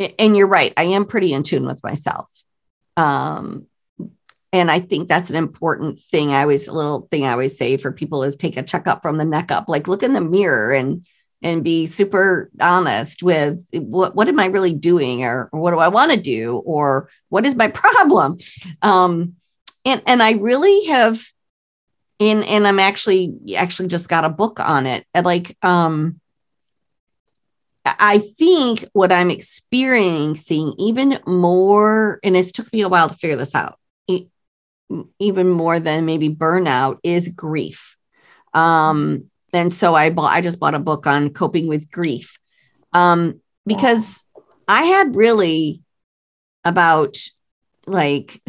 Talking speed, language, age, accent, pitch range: 160 wpm, English, 50-69, American, 155-210 Hz